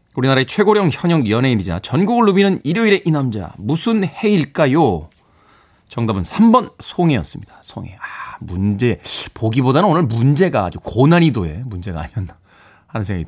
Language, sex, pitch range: Korean, male, 105-155 Hz